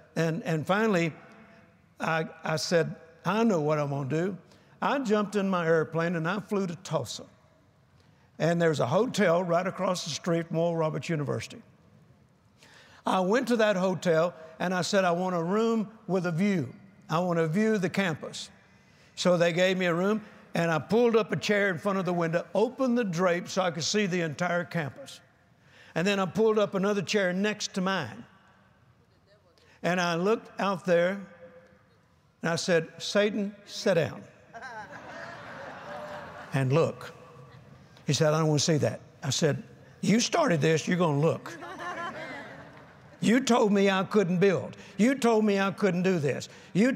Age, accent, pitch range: 60-79, American, 165-205 Hz